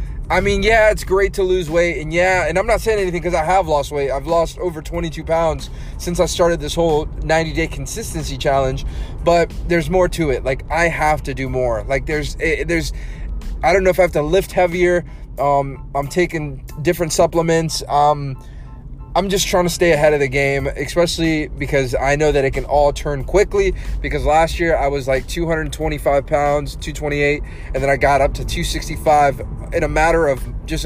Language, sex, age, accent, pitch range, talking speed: English, male, 20-39, American, 145-180 Hz, 195 wpm